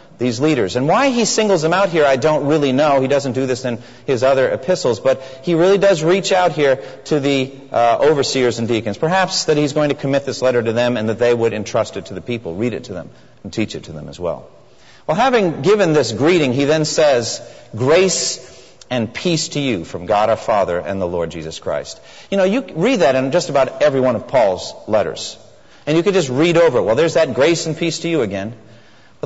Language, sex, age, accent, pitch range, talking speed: English, male, 40-59, American, 130-200 Hz, 240 wpm